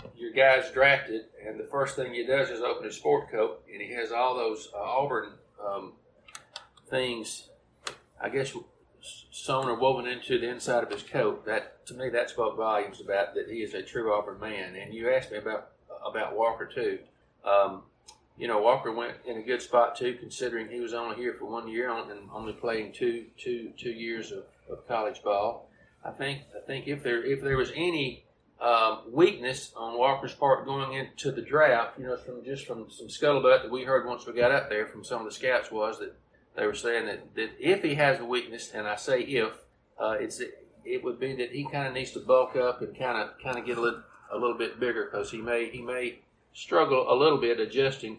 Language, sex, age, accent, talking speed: English, male, 40-59, American, 220 wpm